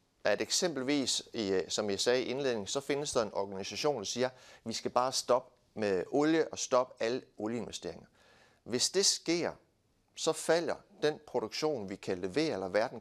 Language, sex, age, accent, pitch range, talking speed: Danish, male, 60-79, native, 105-155 Hz, 170 wpm